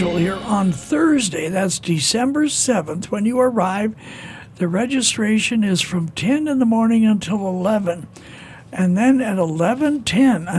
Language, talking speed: English, 130 wpm